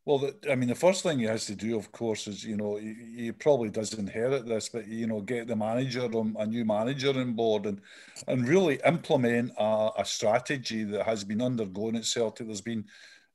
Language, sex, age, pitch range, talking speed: English, male, 50-69, 105-120 Hz, 210 wpm